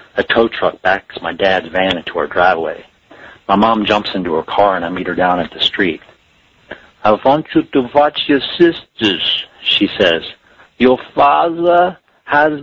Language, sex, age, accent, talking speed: English, male, 40-59, American, 170 wpm